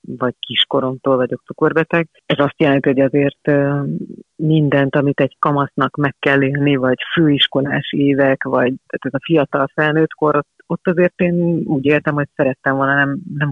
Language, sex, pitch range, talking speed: Hungarian, female, 135-155 Hz, 160 wpm